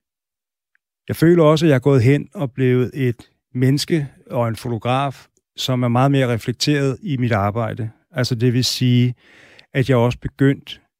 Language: Danish